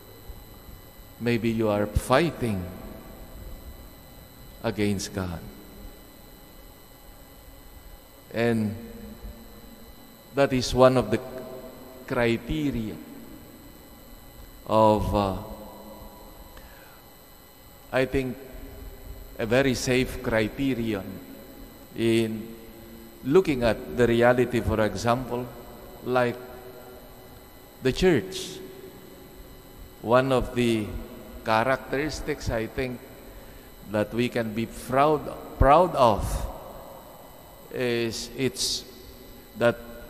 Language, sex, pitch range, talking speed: English, male, 110-130 Hz, 70 wpm